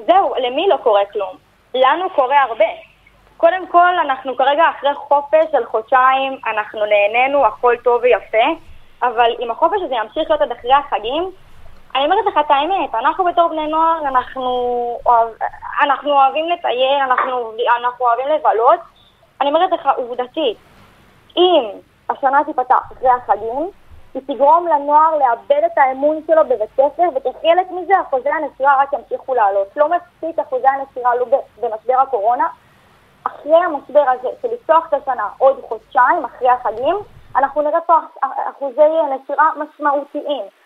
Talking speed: 140 wpm